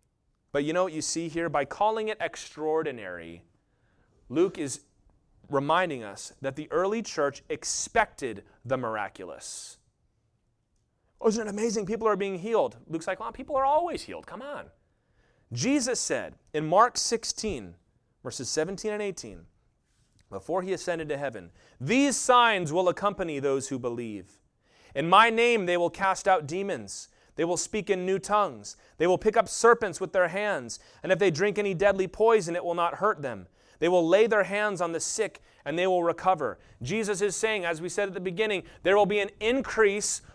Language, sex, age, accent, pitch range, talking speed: English, male, 30-49, American, 140-210 Hz, 180 wpm